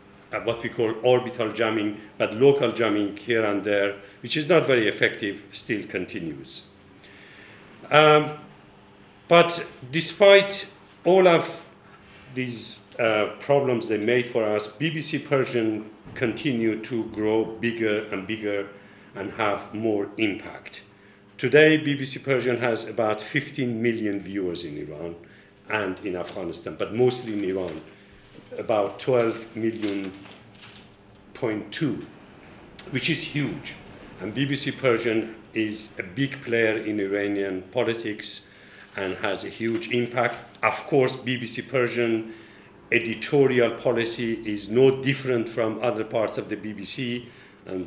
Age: 50-69